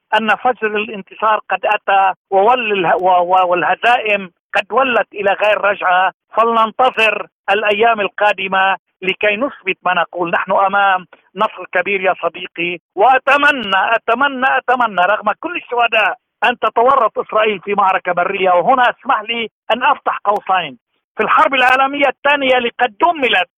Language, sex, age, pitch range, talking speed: Arabic, male, 50-69, 200-255 Hz, 120 wpm